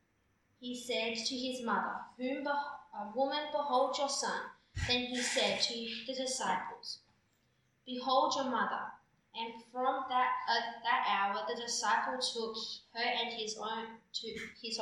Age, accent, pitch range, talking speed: 20-39, Australian, 220-260 Hz, 145 wpm